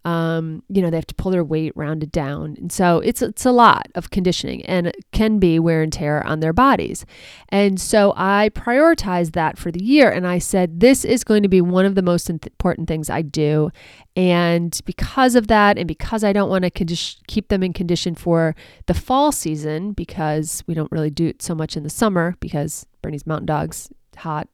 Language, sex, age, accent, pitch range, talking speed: English, female, 30-49, American, 165-200 Hz, 215 wpm